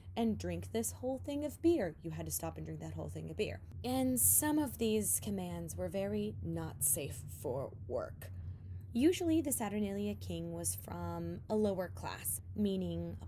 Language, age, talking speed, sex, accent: English, 20-39, 180 wpm, female, American